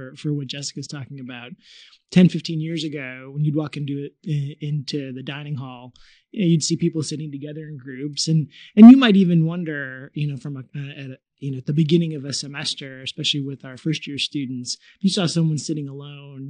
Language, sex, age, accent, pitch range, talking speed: English, male, 20-39, American, 140-165 Hz, 210 wpm